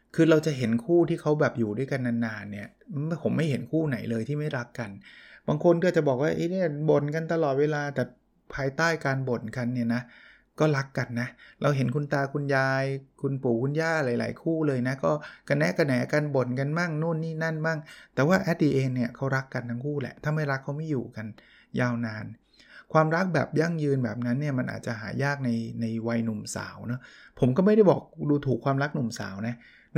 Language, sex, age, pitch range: Thai, male, 20-39, 120-155 Hz